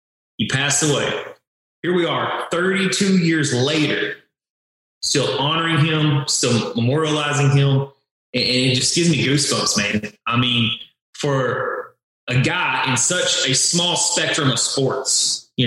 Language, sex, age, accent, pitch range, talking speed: English, male, 20-39, American, 130-175 Hz, 135 wpm